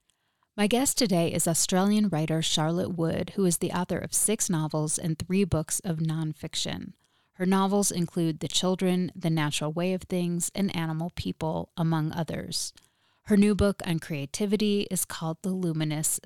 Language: English